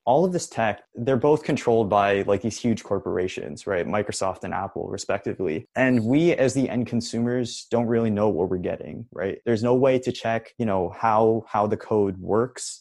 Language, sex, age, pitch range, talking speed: English, male, 20-39, 100-120 Hz, 195 wpm